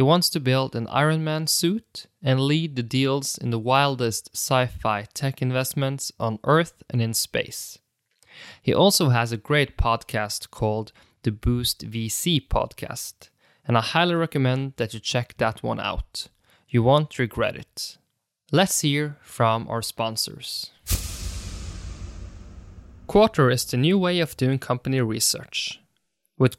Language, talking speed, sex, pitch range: English, 145 wpm, male, 120-160 Hz